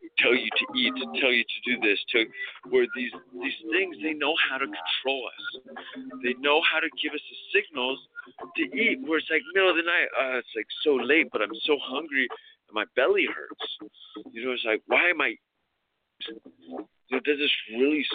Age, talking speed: 50-69, 200 wpm